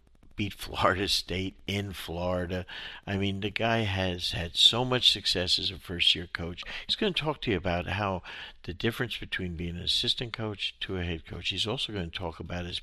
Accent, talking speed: American, 205 wpm